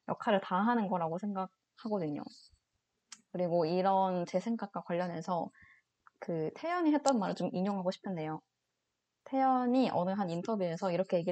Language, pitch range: Korean, 180-225 Hz